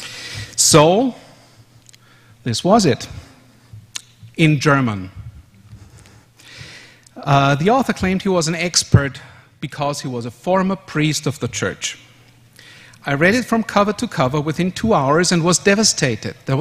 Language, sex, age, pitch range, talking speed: English, male, 50-69, 120-170 Hz, 135 wpm